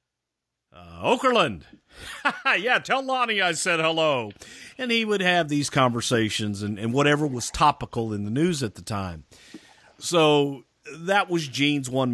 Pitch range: 110-145 Hz